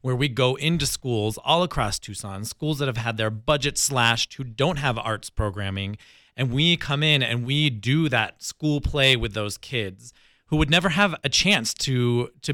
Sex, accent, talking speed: male, American, 195 wpm